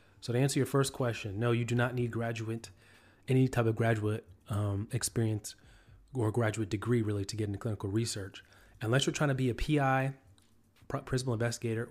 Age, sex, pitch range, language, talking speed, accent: 30-49, male, 105-125 Hz, English, 180 wpm, American